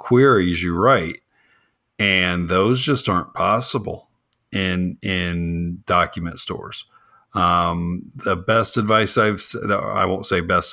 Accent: American